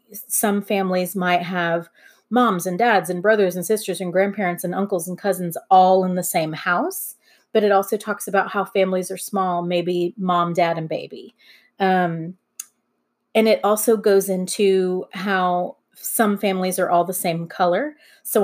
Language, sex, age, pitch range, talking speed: English, female, 30-49, 175-200 Hz, 165 wpm